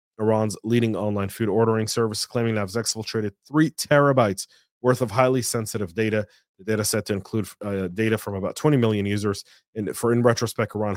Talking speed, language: 185 wpm, English